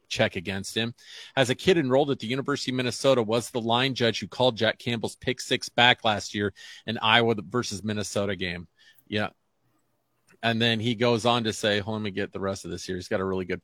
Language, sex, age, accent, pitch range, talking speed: English, male, 40-59, American, 105-125 Hz, 235 wpm